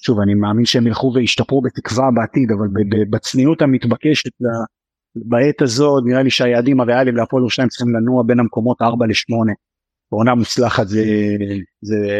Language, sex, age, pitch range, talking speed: Hebrew, male, 30-49, 110-130 Hz, 145 wpm